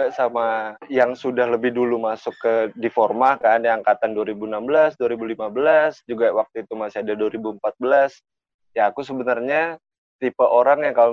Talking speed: 140 wpm